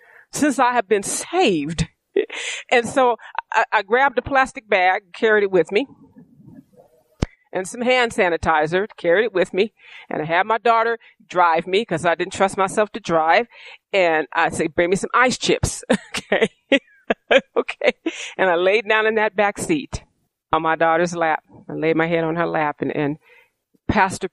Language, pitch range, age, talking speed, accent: English, 150-200 Hz, 40-59, 175 wpm, American